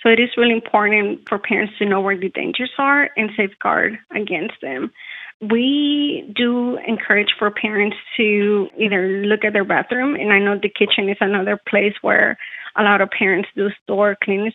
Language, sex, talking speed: English, female, 180 wpm